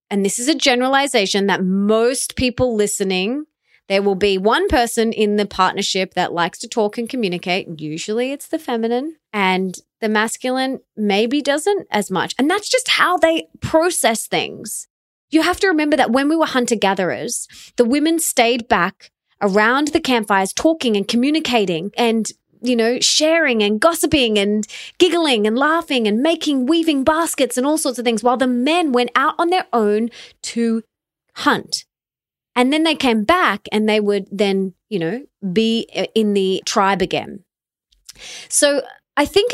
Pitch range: 200-280 Hz